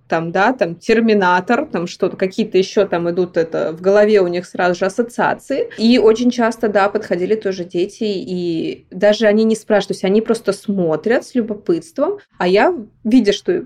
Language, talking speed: Russian, 180 wpm